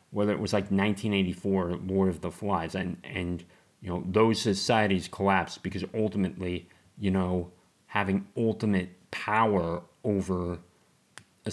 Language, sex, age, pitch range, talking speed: English, male, 30-49, 90-105 Hz, 130 wpm